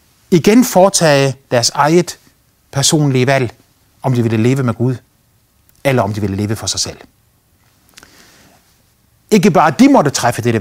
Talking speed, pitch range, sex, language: 145 wpm, 110-140 Hz, male, Danish